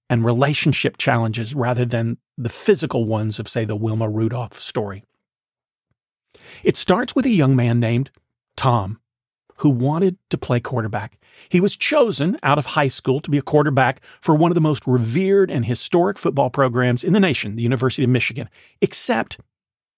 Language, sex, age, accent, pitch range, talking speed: English, male, 40-59, American, 125-175 Hz, 170 wpm